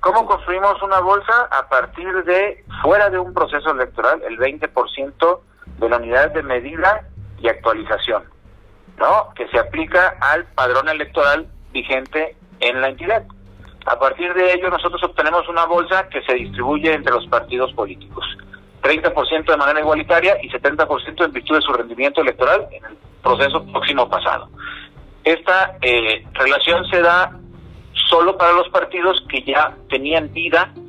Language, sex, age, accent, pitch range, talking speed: Spanish, male, 50-69, Mexican, 130-170 Hz, 150 wpm